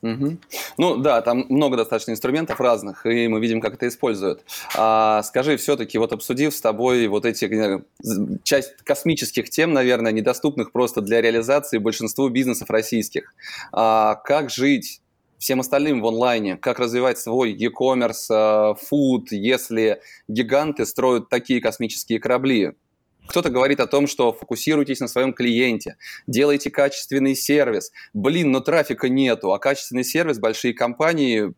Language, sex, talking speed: Russian, male, 135 wpm